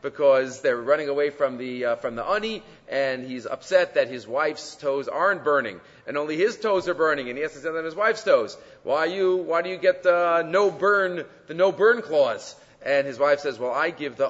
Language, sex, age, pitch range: English, male, 40-59, 125-170 Hz